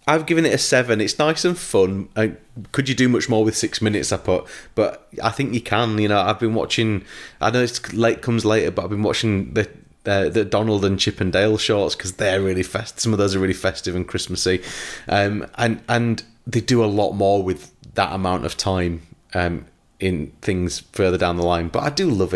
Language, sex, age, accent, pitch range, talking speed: English, male, 30-49, British, 90-115 Hz, 225 wpm